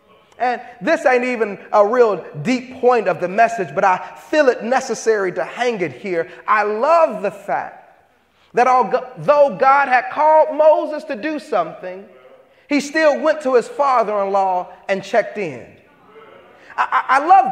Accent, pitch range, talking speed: American, 225-285 Hz, 155 wpm